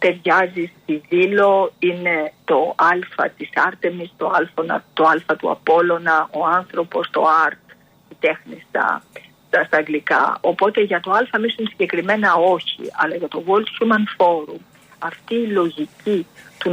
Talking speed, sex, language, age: 135 wpm, female, Greek, 50-69